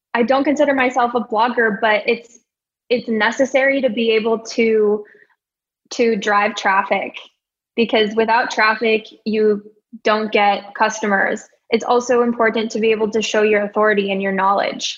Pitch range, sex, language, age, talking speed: 210-240 Hz, female, English, 10-29, 150 wpm